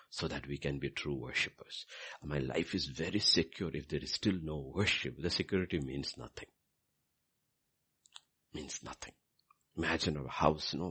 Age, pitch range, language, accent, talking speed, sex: 60-79, 70-90 Hz, English, Indian, 160 wpm, male